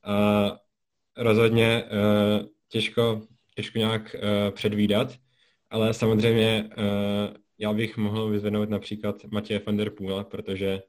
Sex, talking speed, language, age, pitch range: male, 115 wpm, Czech, 20-39, 105-110 Hz